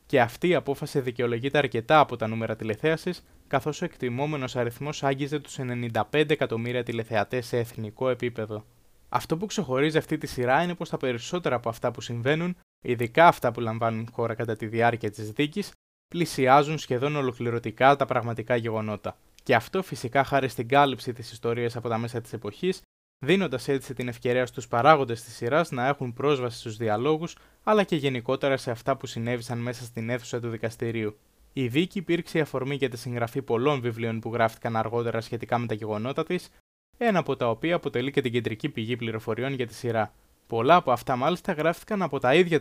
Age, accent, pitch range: 20-39, native, 115-145 Hz